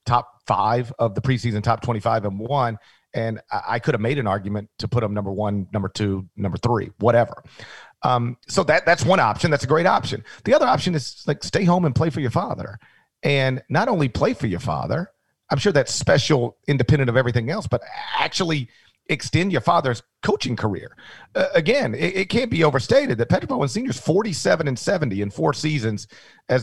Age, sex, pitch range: 40-59, male, 115-150 Hz